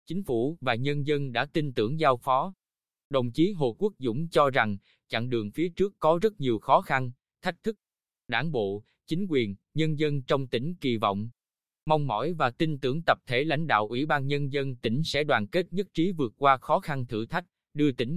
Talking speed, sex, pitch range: 215 wpm, male, 120-155 Hz